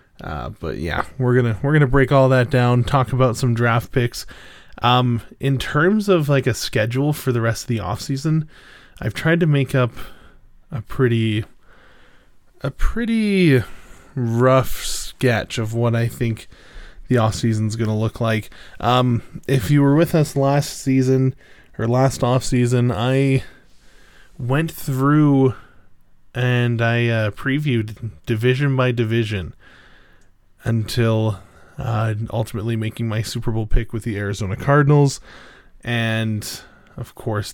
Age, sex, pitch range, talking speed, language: 20-39, male, 110-130 Hz, 140 wpm, English